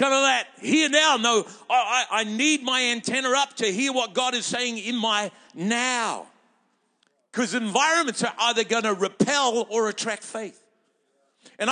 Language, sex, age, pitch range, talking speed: English, male, 50-69, 210-255 Hz, 165 wpm